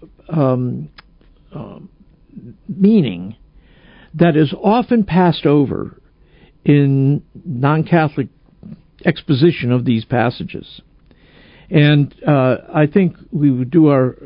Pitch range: 130-175 Hz